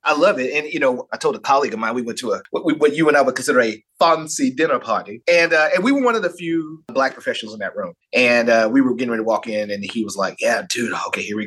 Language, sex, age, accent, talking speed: English, male, 30-49, American, 315 wpm